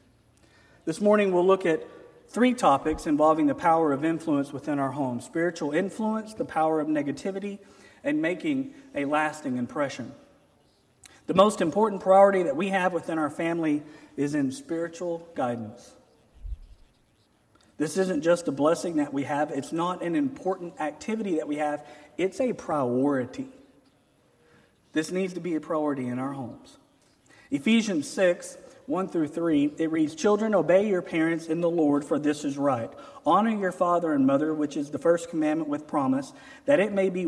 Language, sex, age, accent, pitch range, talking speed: English, male, 40-59, American, 145-225 Hz, 165 wpm